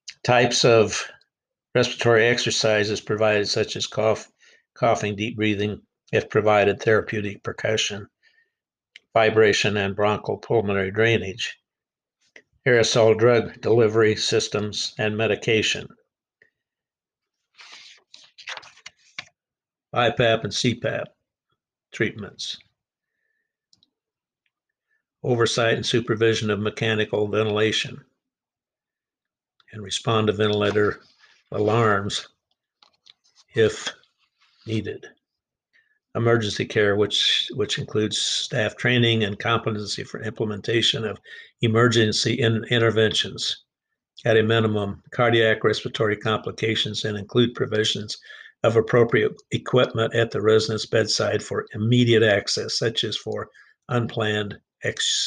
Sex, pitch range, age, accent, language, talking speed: male, 105-120 Hz, 60-79, American, English, 85 wpm